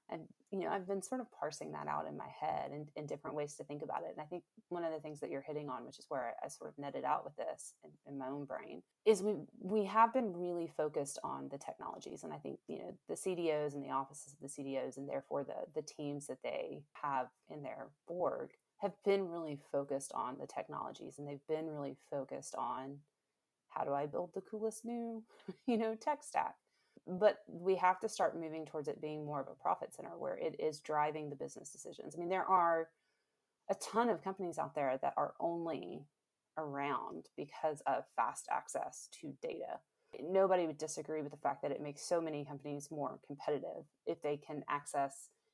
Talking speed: 215 wpm